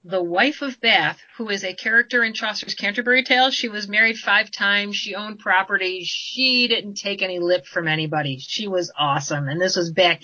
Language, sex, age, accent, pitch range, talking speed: English, female, 40-59, American, 180-225 Hz, 200 wpm